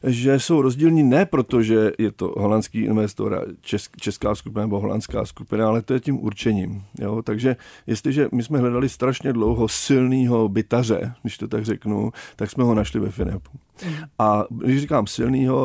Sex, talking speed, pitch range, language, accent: male, 165 wpm, 105-130 Hz, Czech, native